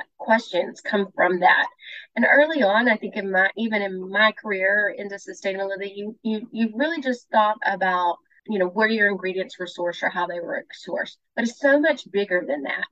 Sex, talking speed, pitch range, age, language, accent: female, 200 wpm, 185-225 Hz, 30-49, English, American